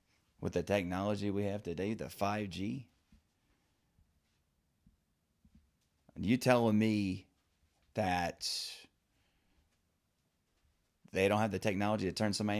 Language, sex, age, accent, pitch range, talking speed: English, male, 30-49, American, 80-110 Hz, 95 wpm